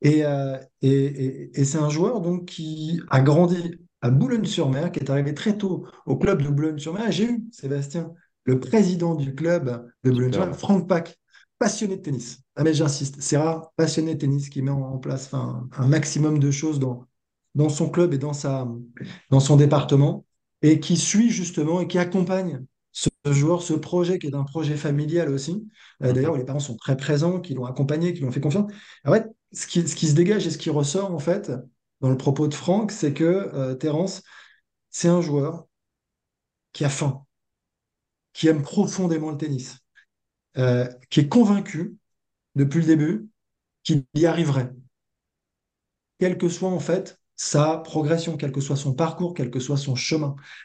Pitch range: 140-175 Hz